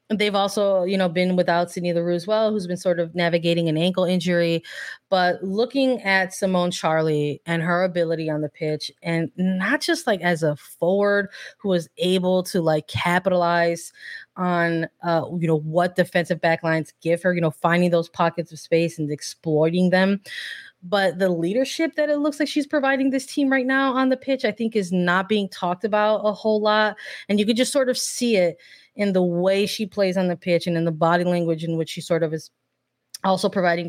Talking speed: 205 wpm